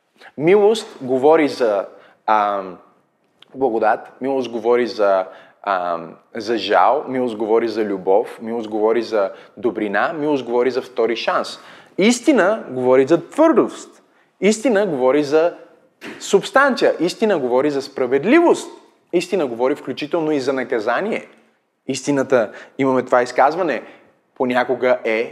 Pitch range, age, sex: 125-200 Hz, 20-39, male